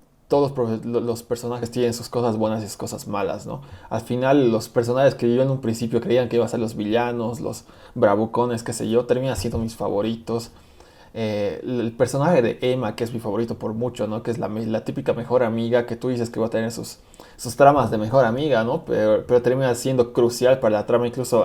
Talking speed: 220 wpm